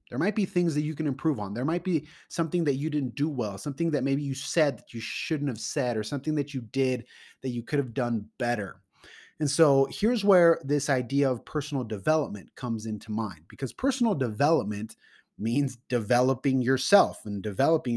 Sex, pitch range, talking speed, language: male, 115-145 Hz, 195 wpm, English